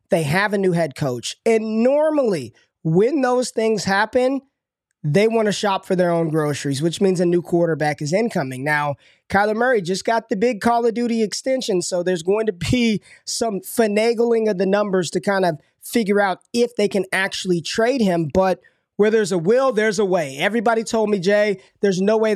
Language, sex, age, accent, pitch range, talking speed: English, male, 20-39, American, 175-220 Hz, 200 wpm